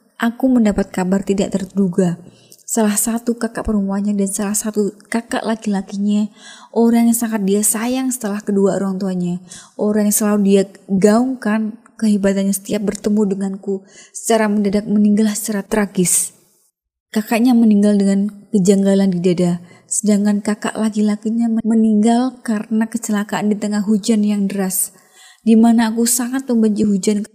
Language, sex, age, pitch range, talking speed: Indonesian, female, 20-39, 200-225 Hz, 130 wpm